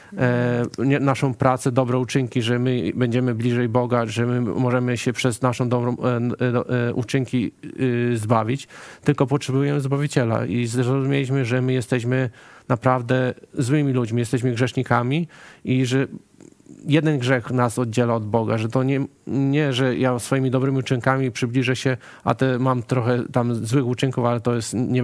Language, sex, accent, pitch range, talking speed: Polish, male, native, 125-135 Hz, 145 wpm